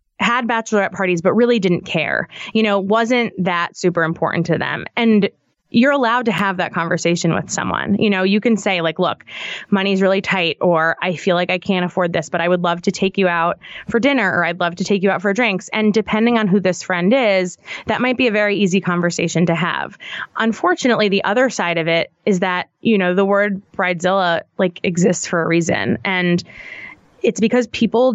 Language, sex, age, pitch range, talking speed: English, female, 20-39, 175-210 Hz, 210 wpm